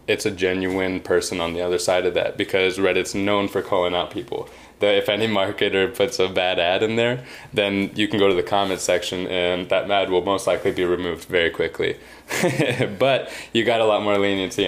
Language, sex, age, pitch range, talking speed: English, male, 20-39, 90-110 Hz, 210 wpm